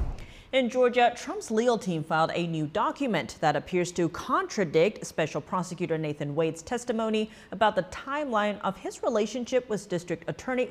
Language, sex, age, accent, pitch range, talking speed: English, female, 30-49, American, 170-235 Hz, 150 wpm